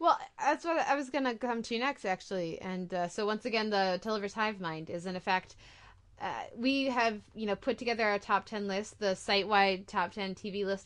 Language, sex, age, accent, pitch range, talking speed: English, female, 20-39, American, 190-235 Hz, 225 wpm